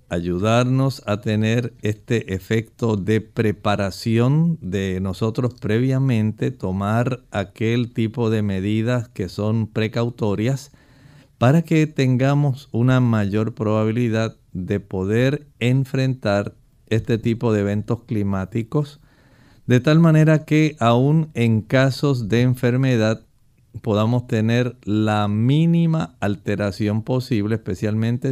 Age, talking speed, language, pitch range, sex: 50-69, 100 wpm, Spanish, 105-130 Hz, male